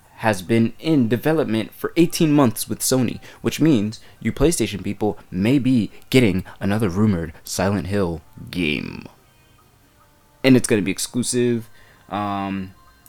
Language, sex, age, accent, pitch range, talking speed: English, male, 20-39, American, 105-135 Hz, 130 wpm